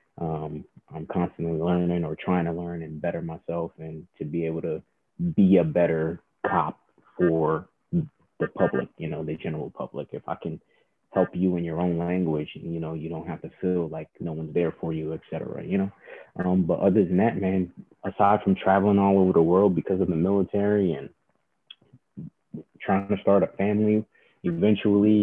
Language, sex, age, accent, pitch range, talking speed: English, male, 20-39, American, 80-100 Hz, 185 wpm